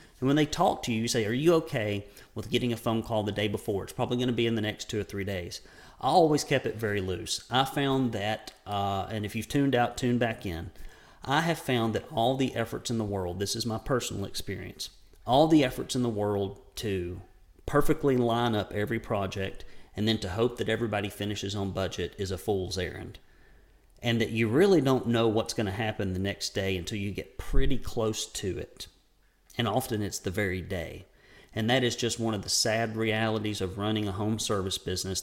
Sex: male